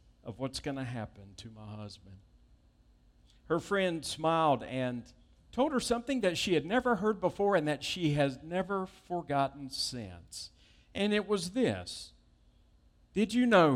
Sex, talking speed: male, 155 wpm